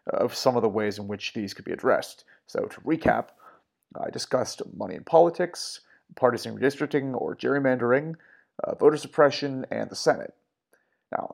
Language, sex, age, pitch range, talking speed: English, male, 30-49, 110-135 Hz, 160 wpm